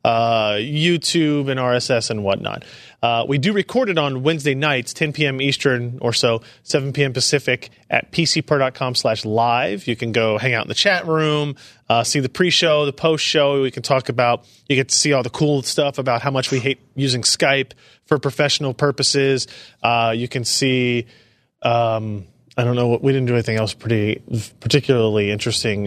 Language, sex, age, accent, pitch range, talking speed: English, male, 30-49, American, 120-145 Hz, 185 wpm